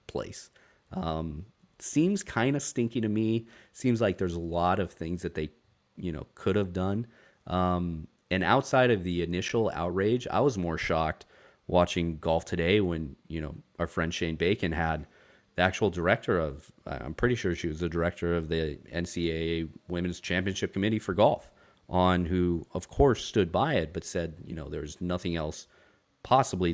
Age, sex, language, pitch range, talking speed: 30-49, male, English, 85-100 Hz, 175 wpm